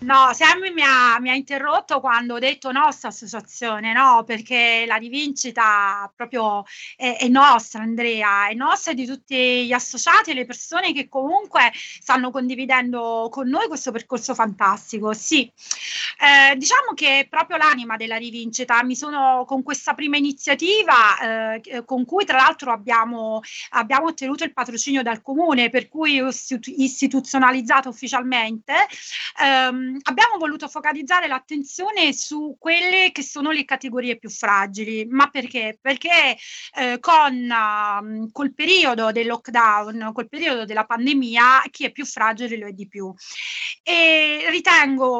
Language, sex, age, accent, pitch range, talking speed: Italian, female, 30-49, native, 230-290 Hz, 140 wpm